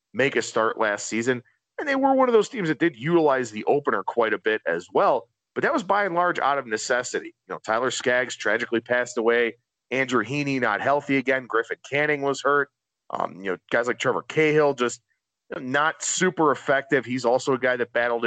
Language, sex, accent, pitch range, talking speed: English, male, American, 125-175 Hz, 210 wpm